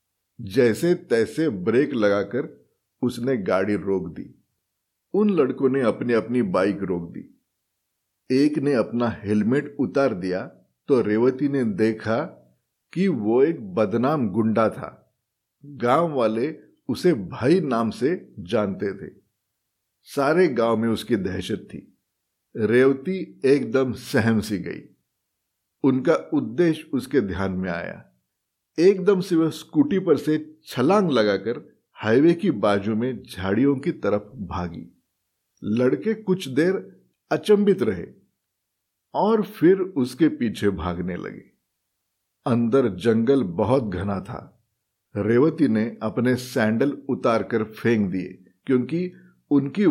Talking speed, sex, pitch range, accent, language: 120 wpm, male, 105-155 Hz, native, Hindi